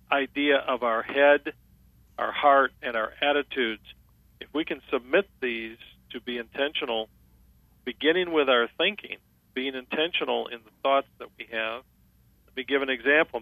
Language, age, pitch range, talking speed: English, 50-69, 115-140 Hz, 150 wpm